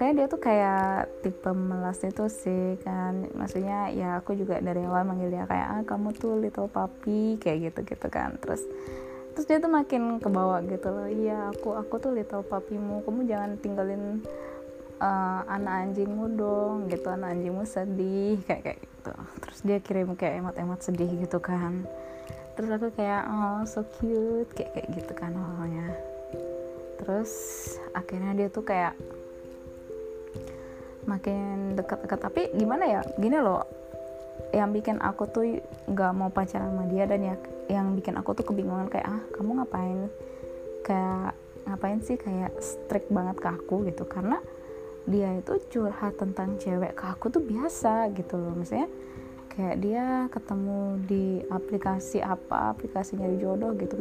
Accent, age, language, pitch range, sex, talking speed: native, 20-39, Indonesian, 180-215 Hz, female, 150 wpm